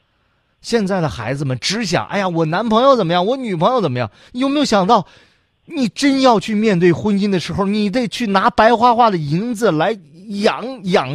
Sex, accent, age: male, native, 30-49